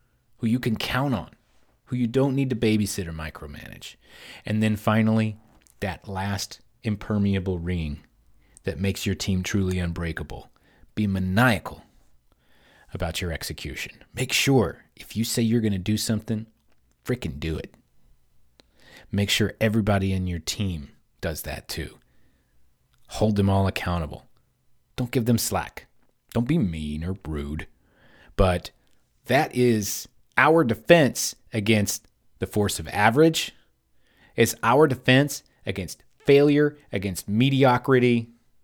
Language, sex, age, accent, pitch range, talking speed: English, male, 30-49, American, 85-115 Hz, 130 wpm